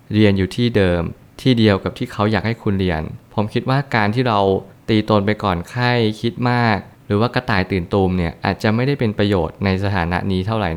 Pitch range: 95-115 Hz